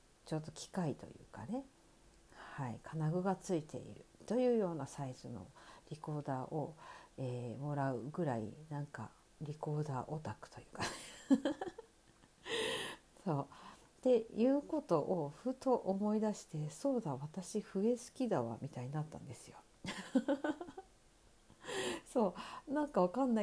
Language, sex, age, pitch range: Japanese, female, 50-69, 145-230 Hz